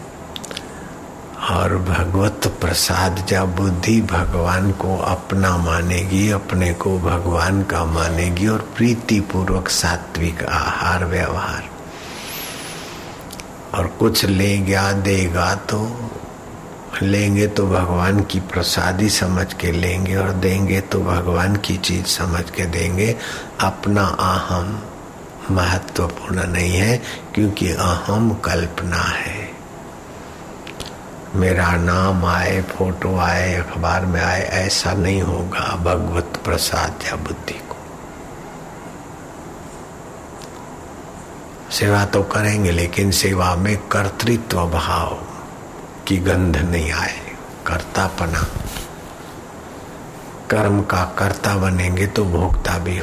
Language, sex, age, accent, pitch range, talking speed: Hindi, male, 60-79, native, 85-100 Hz, 100 wpm